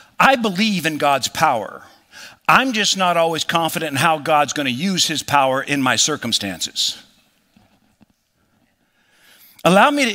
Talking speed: 140 wpm